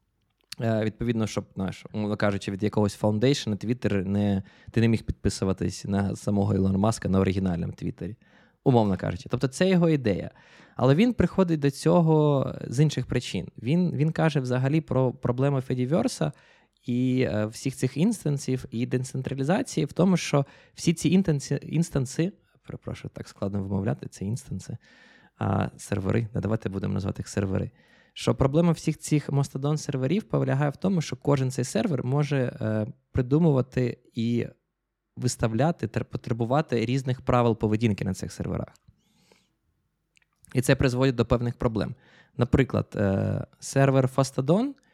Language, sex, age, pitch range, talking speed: Ukrainian, male, 20-39, 105-145 Hz, 135 wpm